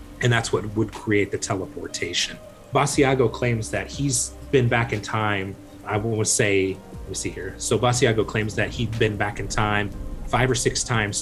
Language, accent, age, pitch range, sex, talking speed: English, American, 30-49, 100-120 Hz, male, 185 wpm